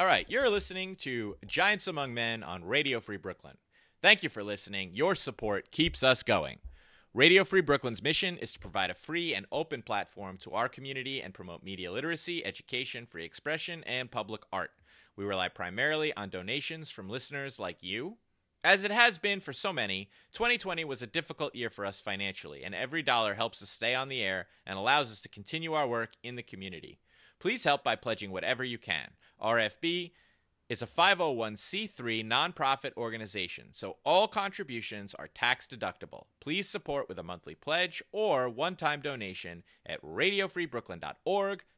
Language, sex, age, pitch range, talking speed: English, male, 30-49, 105-170 Hz, 170 wpm